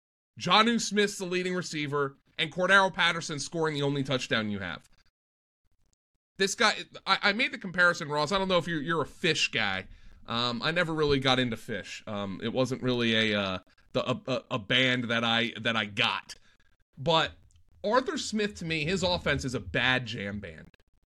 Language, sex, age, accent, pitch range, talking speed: English, male, 30-49, American, 110-175 Hz, 185 wpm